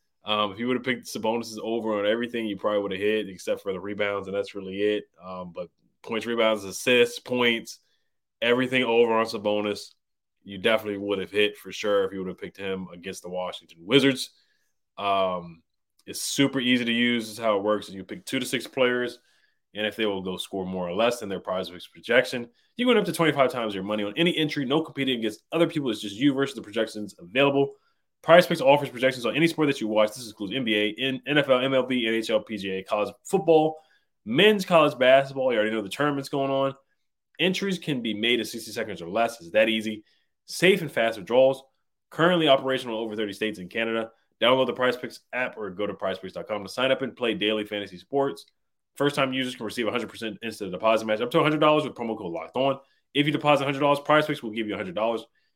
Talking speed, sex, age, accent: 215 wpm, male, 20-39, American